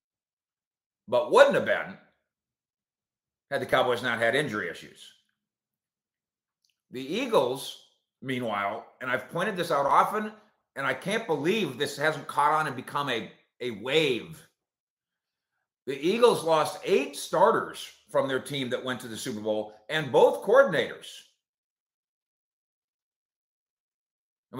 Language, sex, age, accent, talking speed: English, male, 50-69, American, 125 wpm